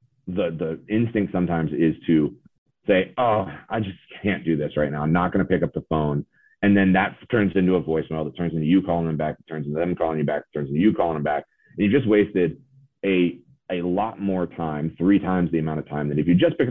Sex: male